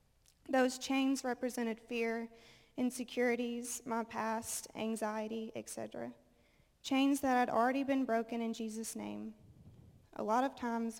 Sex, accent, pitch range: female, American, 215-250 Hz